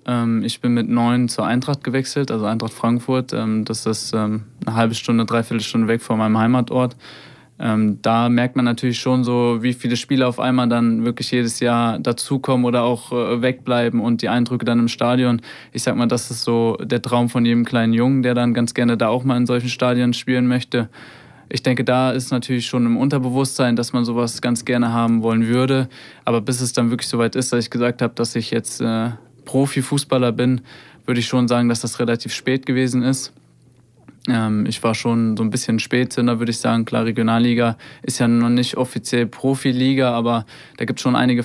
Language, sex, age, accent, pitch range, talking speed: German, male, 20-39, German, 115-125 Hz, 200 wpm